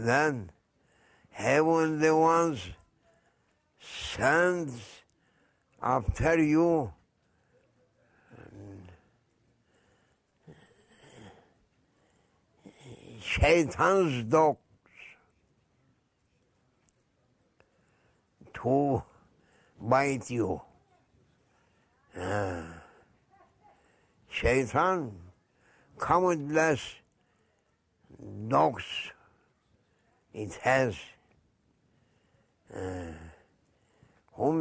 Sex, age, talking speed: male, 60-79, 35 wpm